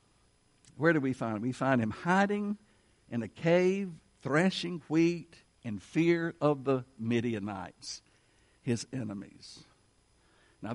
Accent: American